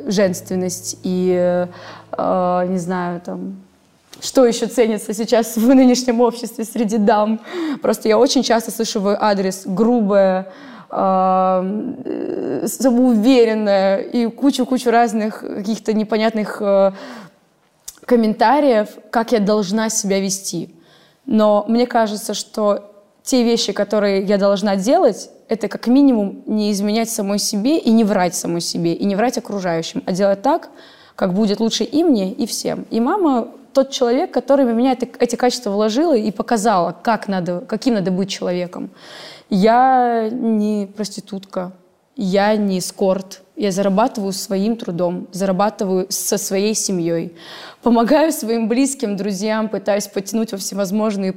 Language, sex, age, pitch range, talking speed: Russian, female, 20-39, 190-235 Hz, 125 wpm